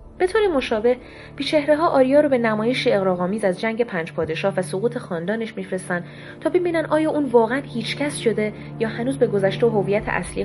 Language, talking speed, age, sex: Persian, 180 wpm, 20-39, female